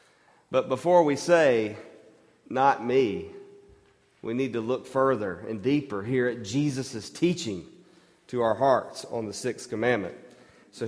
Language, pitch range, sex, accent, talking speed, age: English, 125-155 Hz, male, American, 140 wpm, 40-59